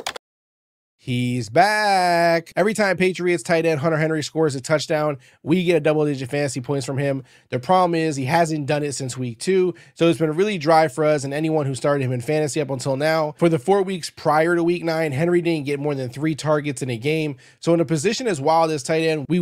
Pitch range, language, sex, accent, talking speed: 145-170 Hz, English, male, American, 235 wpm